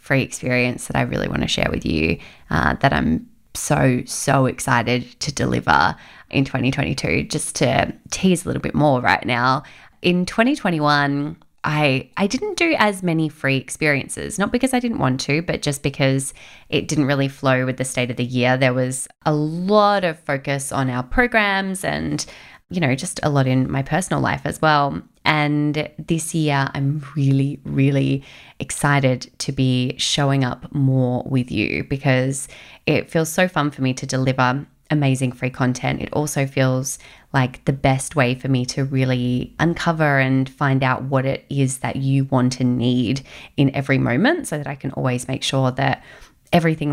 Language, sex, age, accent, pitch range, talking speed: English, female, 20-39, Australian, 130-150 Hz, 180 wpm